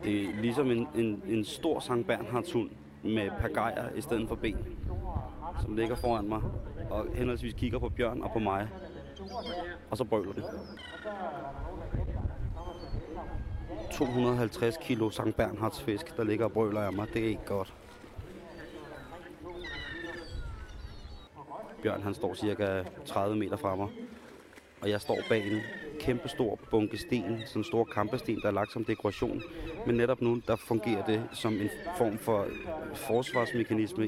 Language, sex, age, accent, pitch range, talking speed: Danish, male, 30-49, native, 100-120 Hz, 140 wpm